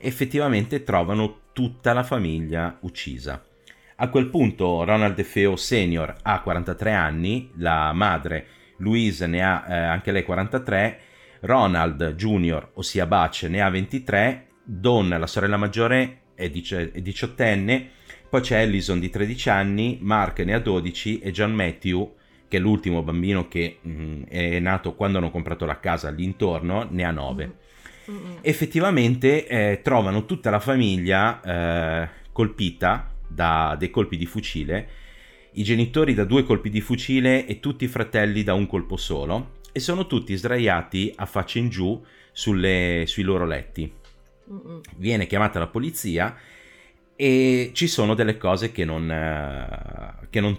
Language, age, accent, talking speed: Italian, 30-49, native, 145 wpm